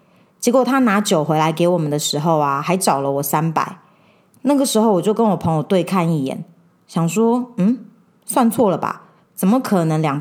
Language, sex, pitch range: Chinese, female, 170-240 Hz